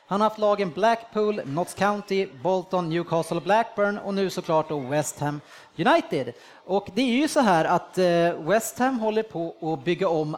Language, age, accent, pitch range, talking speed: Swedish, 30-49, Norwegian, 160-215 Hz, 175 wpm